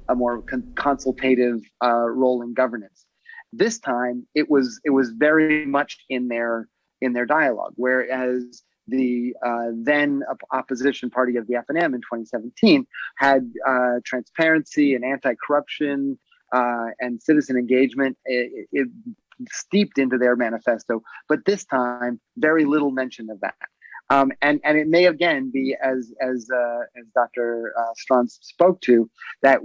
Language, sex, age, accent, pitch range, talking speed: English, male, 30-49, American, 120-145 Hz, 150 wpm